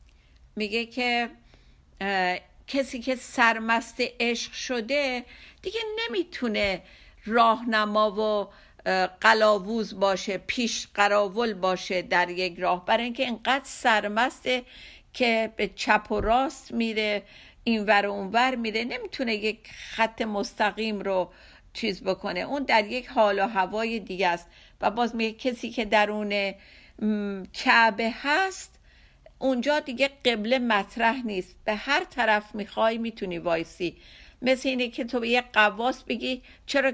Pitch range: 200-245 Hz